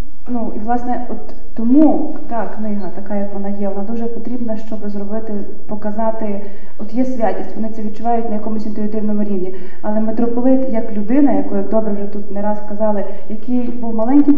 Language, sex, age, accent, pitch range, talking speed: Ukrainian, female, 30-49, native, 210-250 Hz, 175 wpm